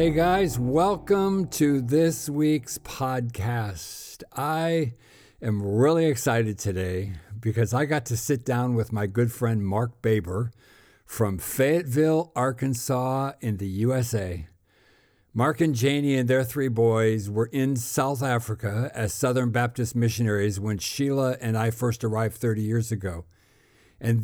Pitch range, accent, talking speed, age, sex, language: 105-135 Hz, American, 135 wpm, 60-79, male, English